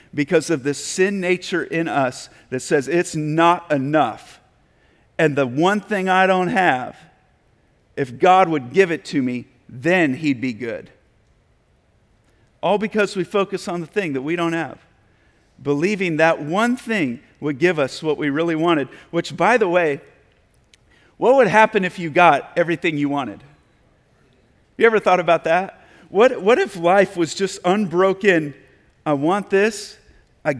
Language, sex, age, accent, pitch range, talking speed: English, male, 50-69, American, 155-195 Hz, 160 wpm